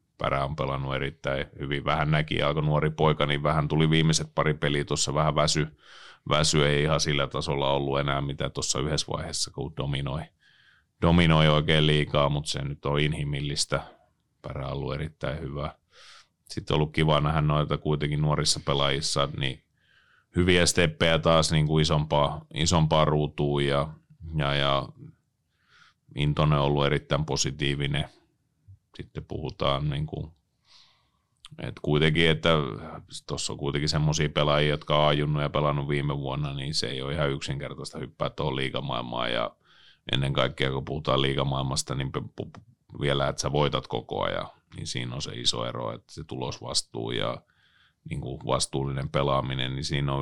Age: 30-49